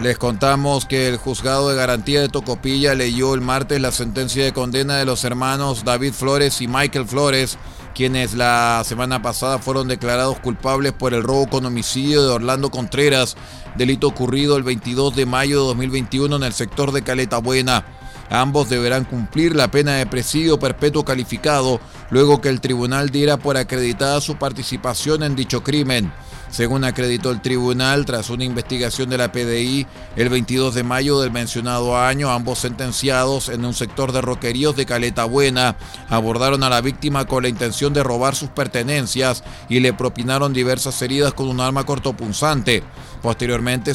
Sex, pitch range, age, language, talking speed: male, 125-140 Hz, 30-49, Spanish, 165 wpm